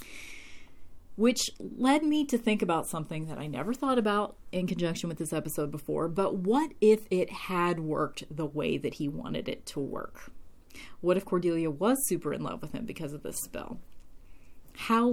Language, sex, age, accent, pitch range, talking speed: English, female, 30-49, American, 150-190 Hz, 185 wpm